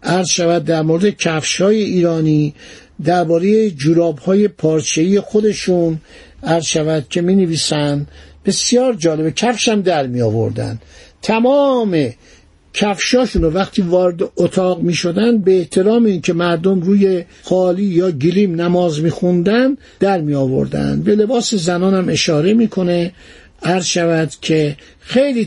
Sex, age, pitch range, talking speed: male, 60-79, 165-215 Hz, 110 wpm